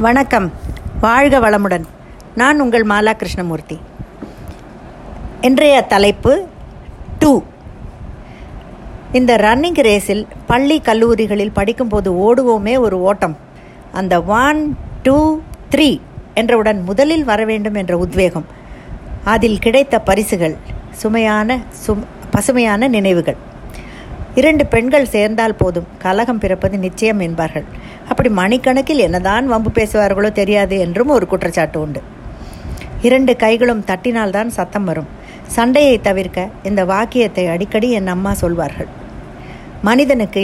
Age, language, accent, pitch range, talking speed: 50-69, Tamil, native, 185-240 Hz, 100 wpm